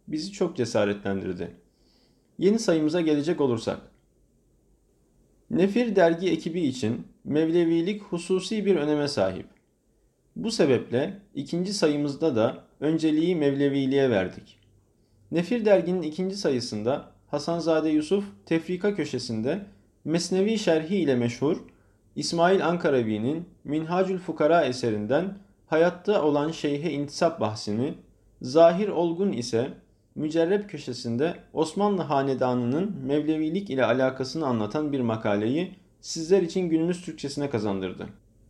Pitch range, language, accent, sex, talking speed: 125-175 Hz, Turkish, native, male, 100 wpm